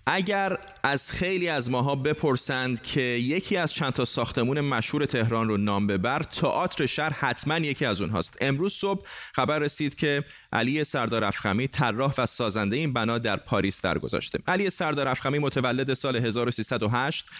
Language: Persian